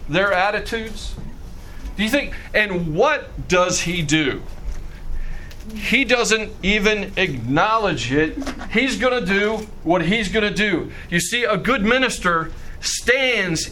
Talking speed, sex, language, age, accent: 130 wpm, male, English, 40-59, American